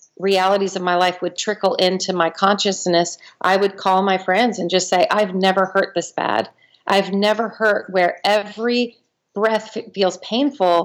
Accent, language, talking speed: American, English, 165 wpm